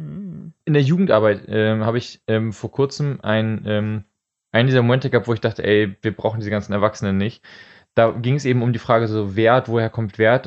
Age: 20-39